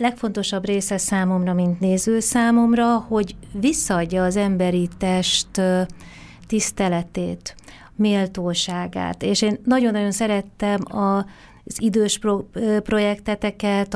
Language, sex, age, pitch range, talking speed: Hungarian, female, 30-49, 185-210 Hz, 85 wpm